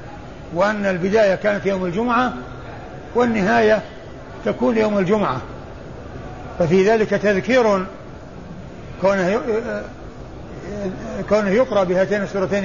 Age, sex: 60-79, male